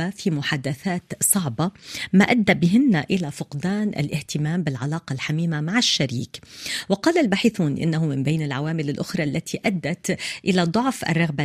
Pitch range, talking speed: 150-190 Hz, 130 wpm